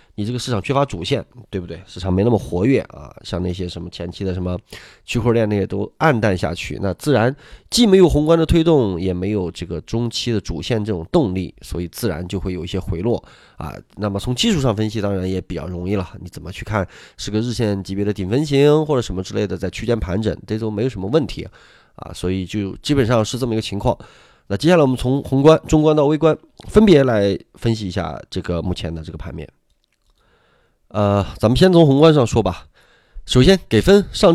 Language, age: Chinese, 20-39